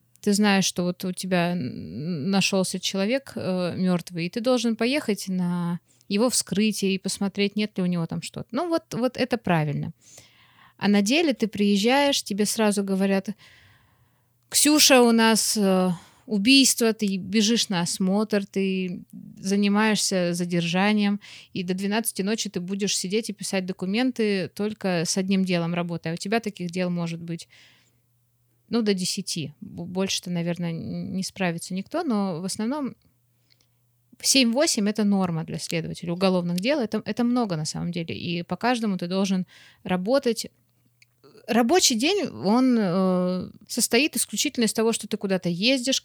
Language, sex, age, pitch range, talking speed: Russian, female, 20-39, 175-215 Hz, 145 wpm